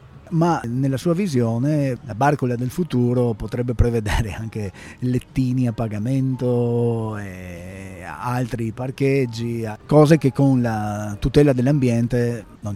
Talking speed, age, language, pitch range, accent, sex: 115 wpm, 30-49, Italian, 110-140 Hz, native, male